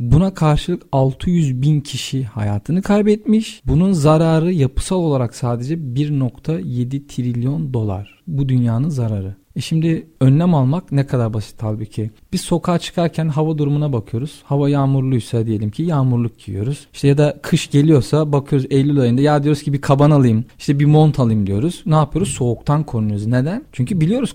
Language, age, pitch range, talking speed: Turkish, 40-59, 120-165 Hz, 160 wpm